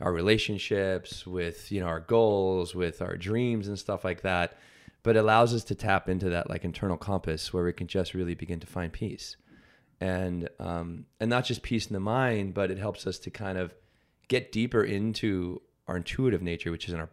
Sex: male